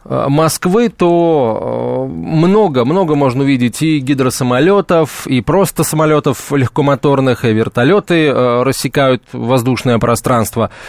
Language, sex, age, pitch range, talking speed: Russian, male, 20-39, 125-165 Hz, 90 wpm